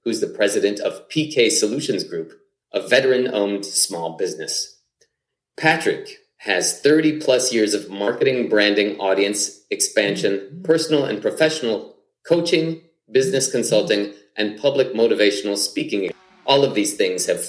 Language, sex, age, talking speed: English, male, 30-49, 120 wpm